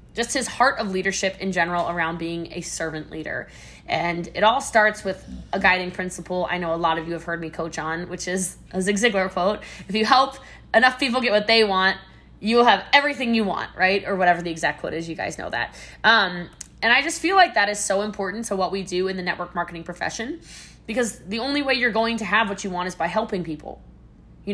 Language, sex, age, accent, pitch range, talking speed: English, female, 20-39, American, 175-220 Hz, 240 wpm